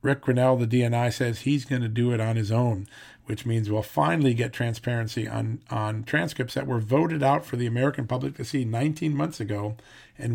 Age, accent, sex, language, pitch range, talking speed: 40-59, American, male, English, 110-130 Hz, 210 wpm